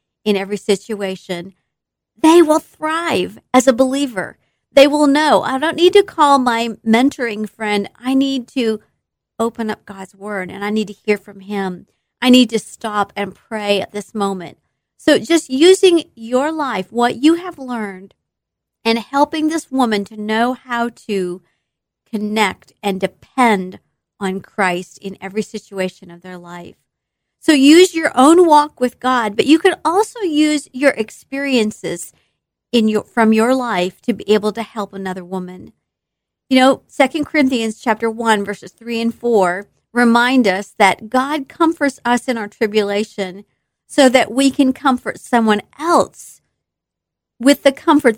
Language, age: English, 50-69